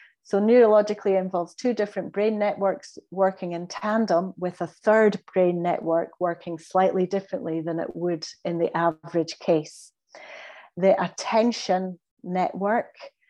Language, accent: English, British